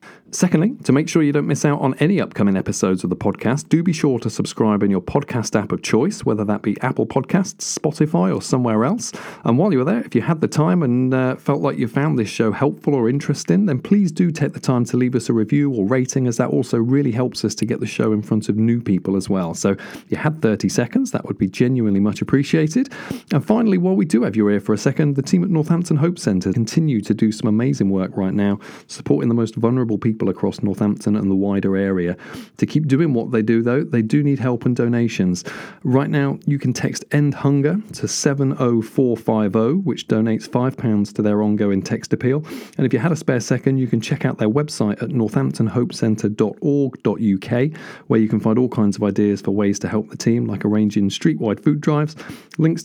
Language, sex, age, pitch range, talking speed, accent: English, male, 40-59, 105-145 Hz, 225 wpm, British